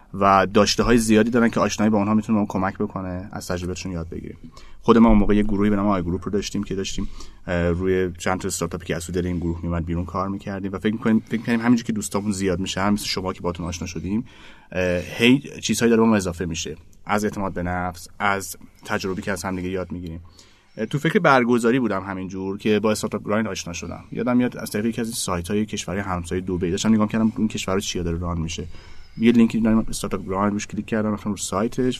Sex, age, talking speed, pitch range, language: male, 30-49, 220 wpm, 90-110 Hz, Persian